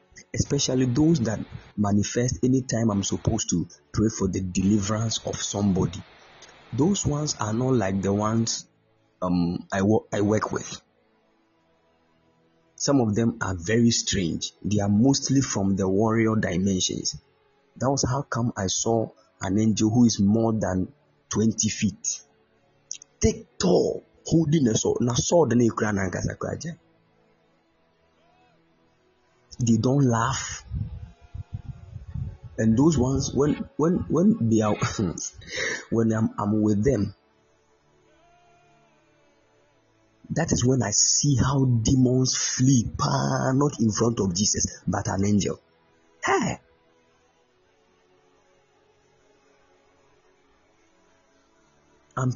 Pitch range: 95-125 Hz